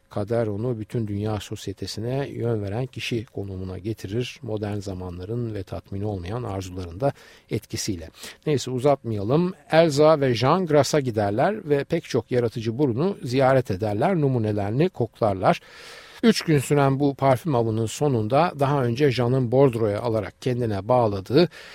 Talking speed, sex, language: 130 wpm, male, Turkish